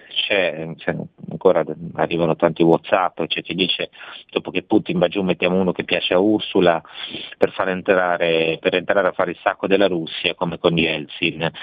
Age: 30-49